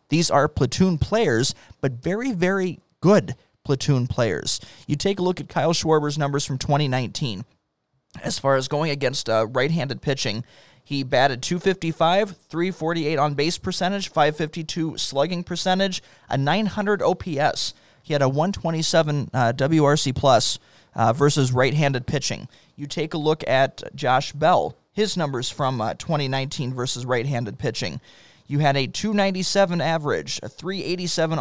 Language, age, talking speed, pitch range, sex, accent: English, 30-49, 140 wpm, 135-170 Hz, male, American